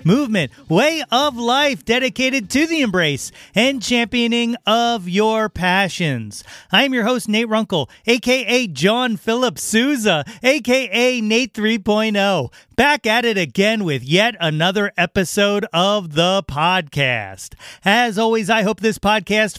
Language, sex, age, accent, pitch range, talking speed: English, male, 30-49, American, 185-240 Hz, 130 wpm